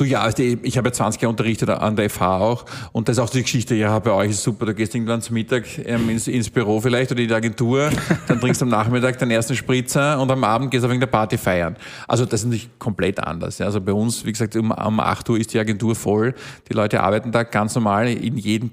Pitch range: 115-135 Hz